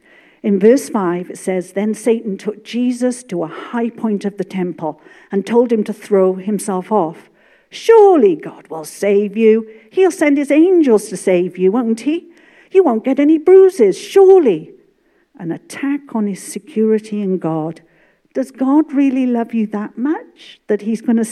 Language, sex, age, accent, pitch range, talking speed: English, female, 50-69, British, 200-295 Hz, 170 wpm